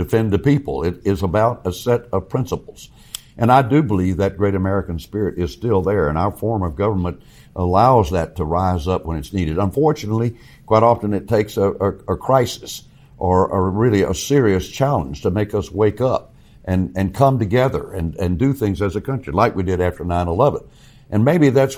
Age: 60-79